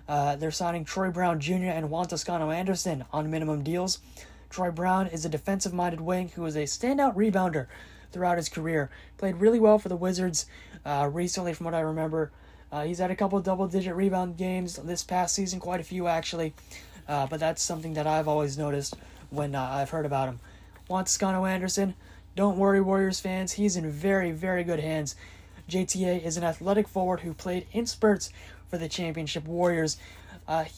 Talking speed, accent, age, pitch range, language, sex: 180 wpm, American, 20-39, 150-190 Hz, English, male